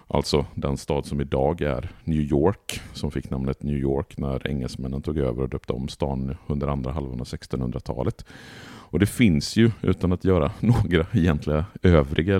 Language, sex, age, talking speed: Swedish, male, 50-69, 175 wpm